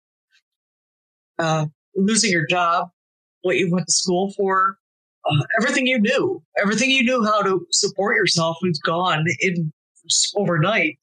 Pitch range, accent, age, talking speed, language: 175-255 Hz, American, 50-69, 135 wpm, English